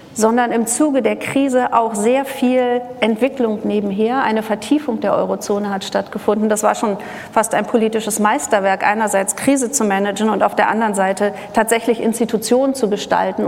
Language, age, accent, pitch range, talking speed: German, 40-59, German, 195-235 Hz, 160 wpm